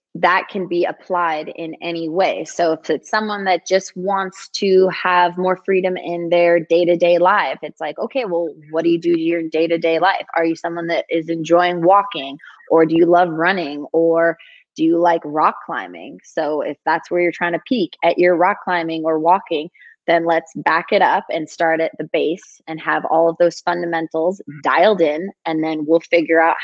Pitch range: 160-180 Hz